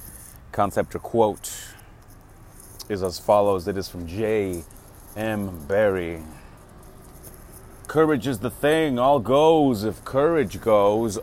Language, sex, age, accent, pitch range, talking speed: English, male, 30-49, American, 100-130 Hz, 105 wpm